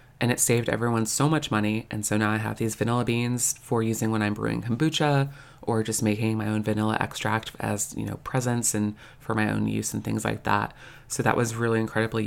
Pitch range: 115-135 Hz